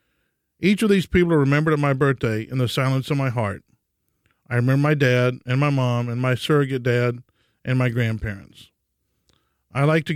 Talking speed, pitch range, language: 190 wpm, 120-155 Hz, English